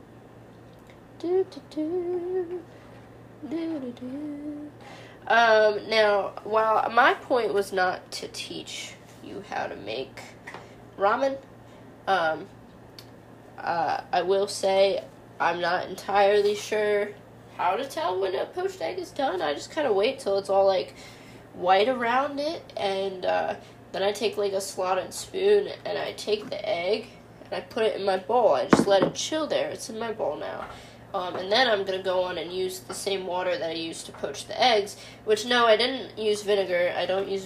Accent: American